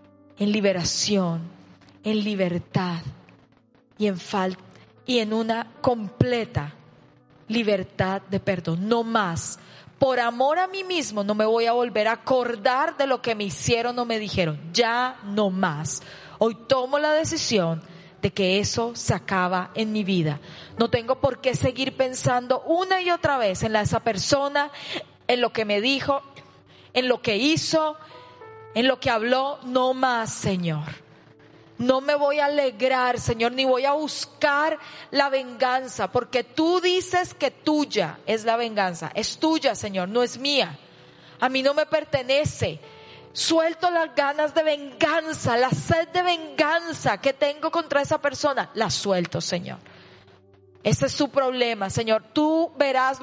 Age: 30-49